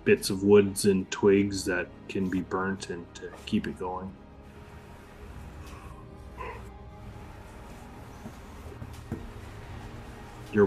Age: 20-39